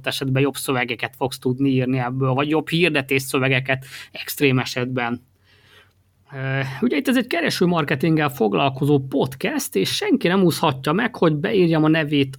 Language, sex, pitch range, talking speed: Hungarian, male, 135-160 Hz, 140 wpm